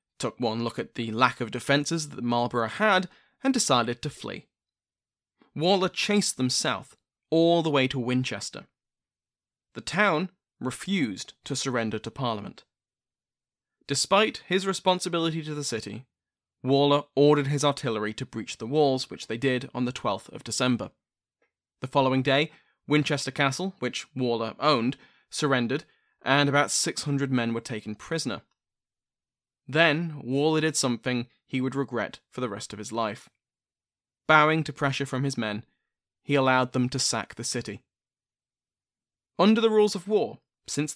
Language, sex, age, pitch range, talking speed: English, male, 20-39, 120-155 Hz, 150 wpm